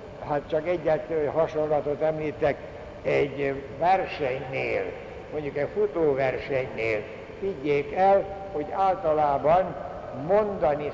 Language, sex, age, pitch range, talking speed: Hungarian, male, 60-79, 150-190 Hz, 80 wpm